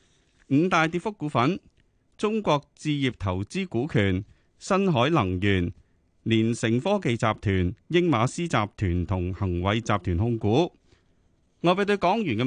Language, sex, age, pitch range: Chinese, male, 30-49, 100-145 Hz